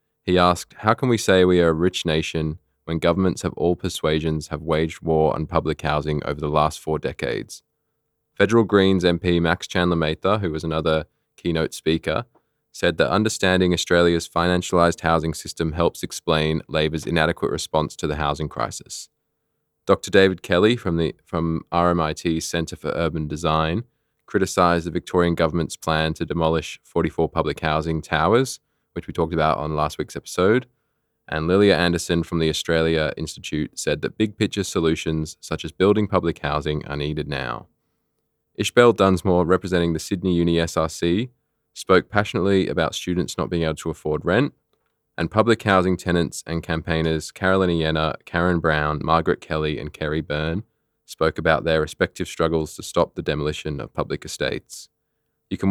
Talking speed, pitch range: 160 wpm, 80-90 Hz